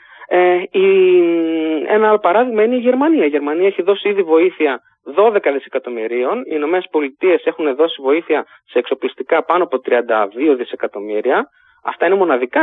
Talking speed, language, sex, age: 140 wpm, Greek, male, 20-39